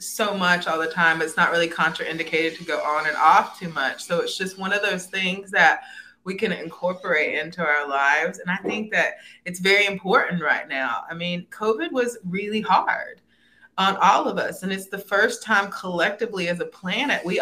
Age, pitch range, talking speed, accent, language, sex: 20-39, 170-225 Hz, 205 wpm, American, English, female